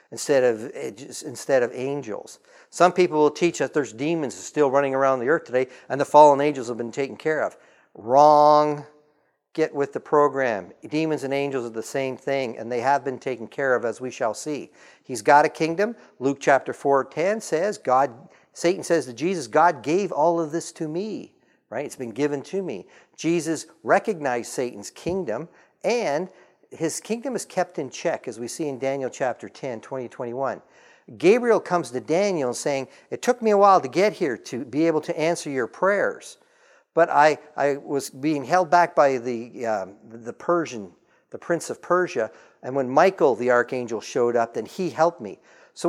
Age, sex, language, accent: 50-69, male, English, American